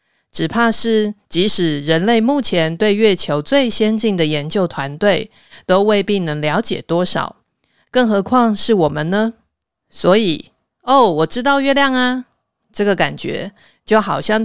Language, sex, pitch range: Chinese, female, 175-230 Hz